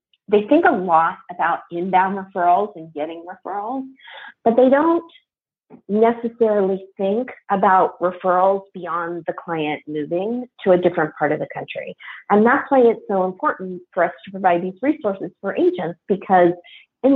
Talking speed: 155 wpm